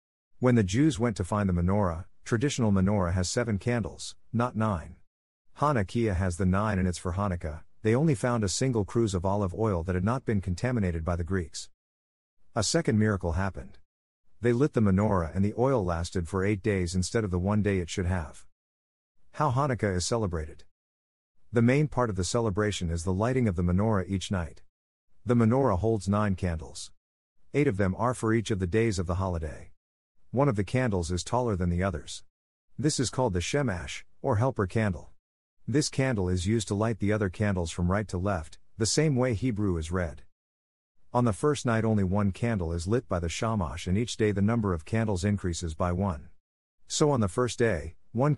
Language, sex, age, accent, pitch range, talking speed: English, male, 50-69, American, 85-115 Hz, 200 wpm